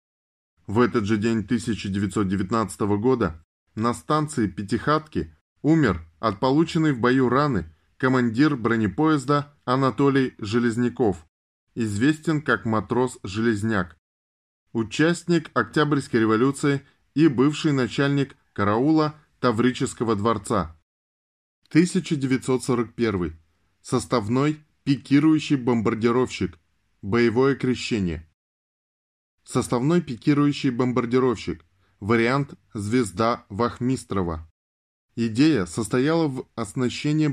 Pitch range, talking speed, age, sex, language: 105-135 Hz, 75 wpm, 20-39, male, Russian